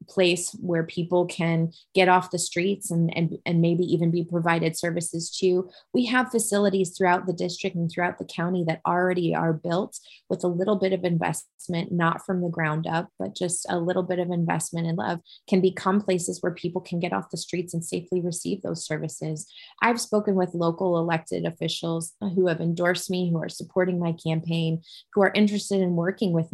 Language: English